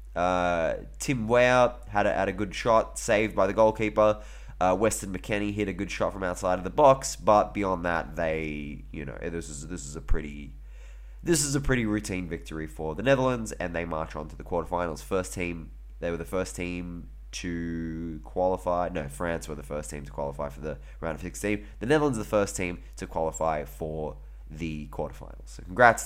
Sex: male